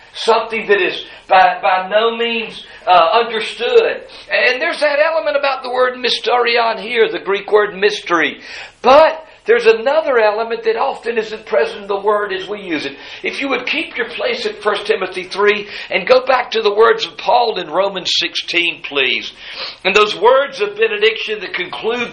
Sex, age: male, 50-69